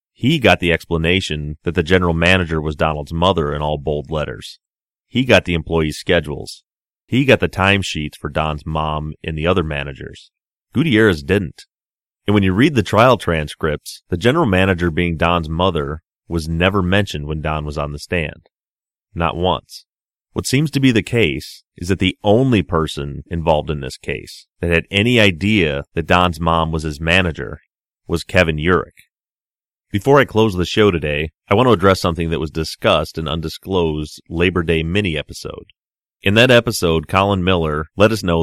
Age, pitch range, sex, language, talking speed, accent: 30-49, 80-95 Hz, male, English, 175 wpm, American